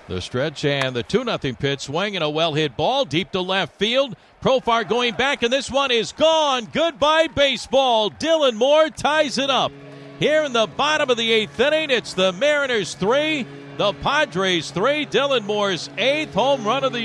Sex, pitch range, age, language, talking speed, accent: male, 135-220 Hz, 50-69, English, 185 wpm, American